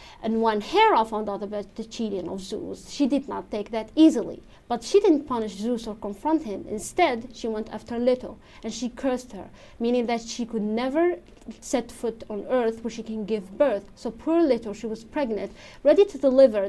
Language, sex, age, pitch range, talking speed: English, female, 30-49, 210-255 Hz, 205 wpm